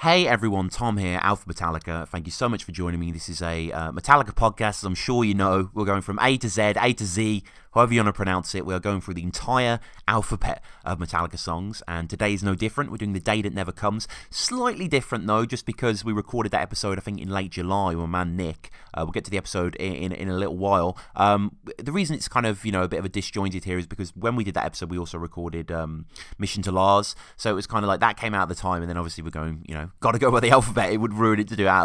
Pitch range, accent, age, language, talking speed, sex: 90-120 Hz, British, 30-49, English, 285 wpm, male